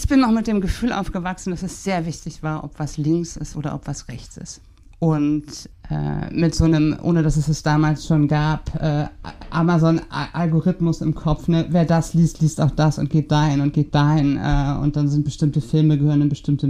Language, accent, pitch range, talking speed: German, German, 145-175 Hz, 215 wpm